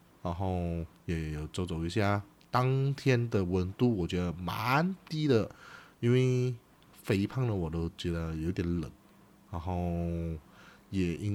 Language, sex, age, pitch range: Chinese, male, 30-49, 85-110 Hz